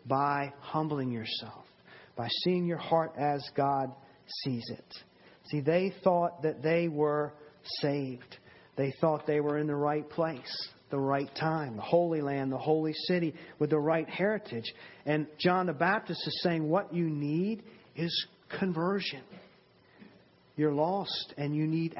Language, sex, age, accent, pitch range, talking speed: English, male, 40-59, American, 150-185 Hz, 150 wpm